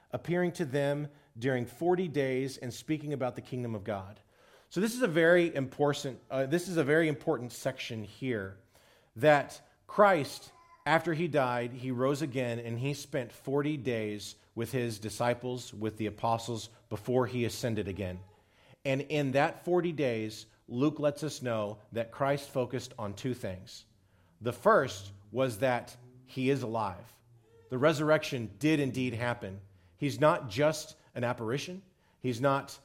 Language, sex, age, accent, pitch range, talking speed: English, male, 40-59, American, 110-145 Hz, 155 wpm